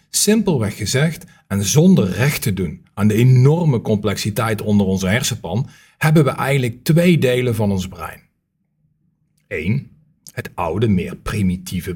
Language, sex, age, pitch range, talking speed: English, male, 40-59, 110-160 Hz, 135 wpm